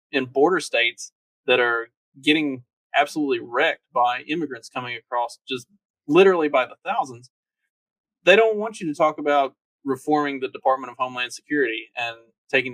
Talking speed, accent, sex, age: 150 wpm, American, male, 20-39